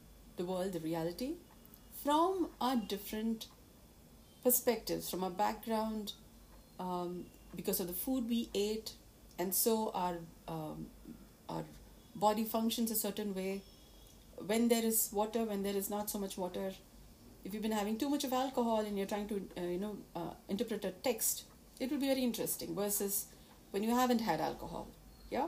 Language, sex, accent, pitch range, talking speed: English, female, Indian, 195-265 Hz, 165 wpm